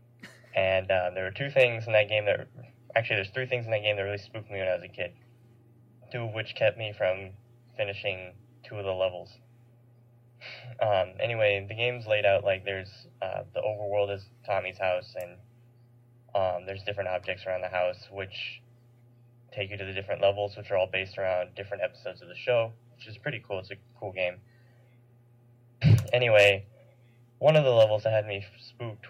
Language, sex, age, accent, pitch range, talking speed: English, male, 10-29, American, 100-120 Hz, 190 wpm